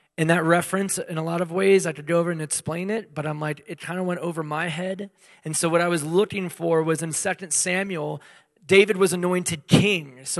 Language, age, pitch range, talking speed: English, 30-49, 155-195 Hz, 235 wpm